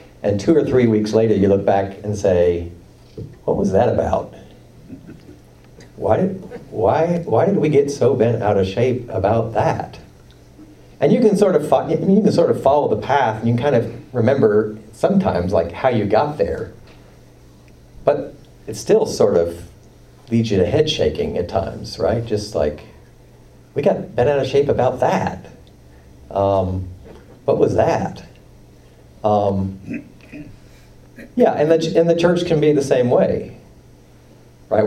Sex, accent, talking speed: male, American, 160 wpm